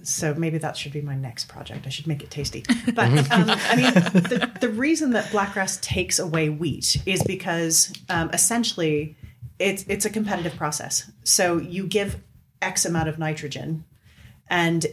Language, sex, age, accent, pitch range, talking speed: English, female, 30-49, American, 145-175 Hz, 170 wpm